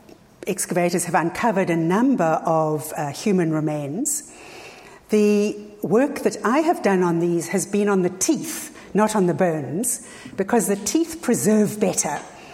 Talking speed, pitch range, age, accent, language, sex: 150 wpm, 165-220 Hz, 60-79, British, English, female